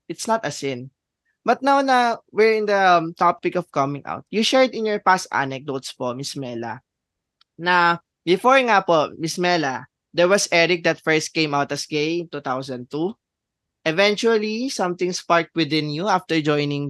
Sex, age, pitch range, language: male, 20-39, 145-185 Hz, Filipino